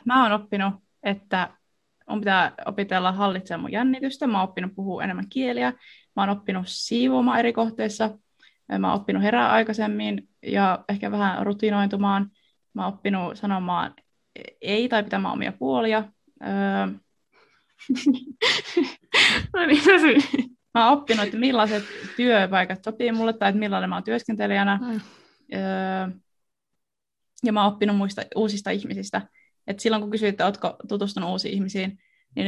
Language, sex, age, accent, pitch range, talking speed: Finnish, female, 20-39, native, 195-225 Hz, 135 wpm